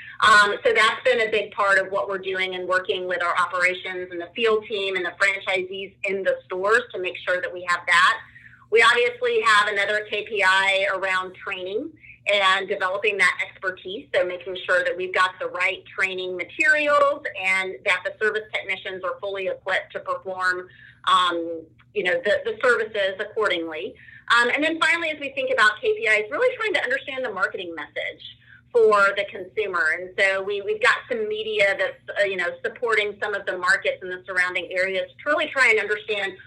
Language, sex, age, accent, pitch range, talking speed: English, female, 30-49, American, 185-285 Hz, 190 wpm